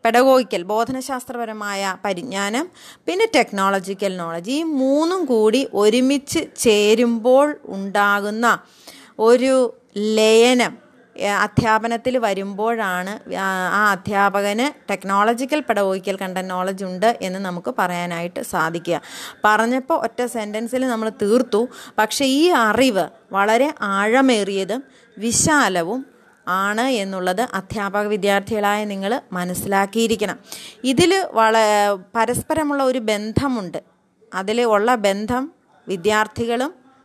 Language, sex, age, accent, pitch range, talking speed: Malayalam, female, 30-49, native, 195-245 Hz, 85 wpm